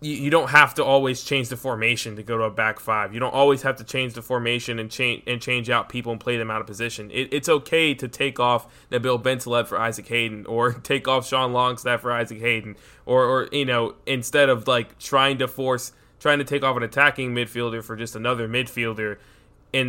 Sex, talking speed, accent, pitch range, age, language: male, 225 wpm, American, 115-130 Hz, 20-39, English